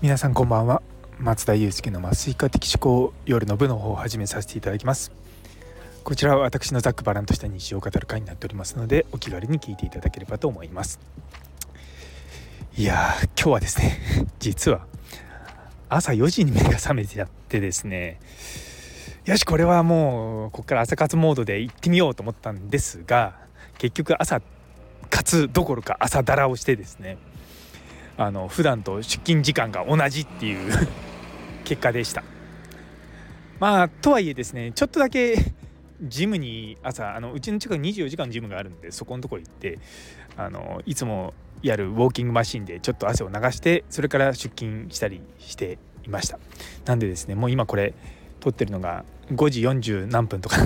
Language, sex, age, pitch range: Japanese, male, 20-39, 95-140 Hz